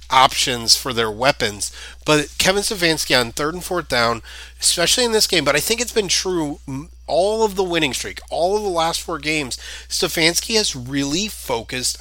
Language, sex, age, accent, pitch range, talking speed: English, male, 30-49, American, 115-165 Hz, 185 wpm